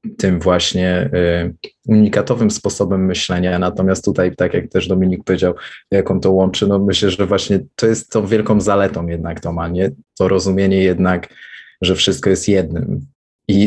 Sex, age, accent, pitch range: male, 20-39, native, 95-105 Hz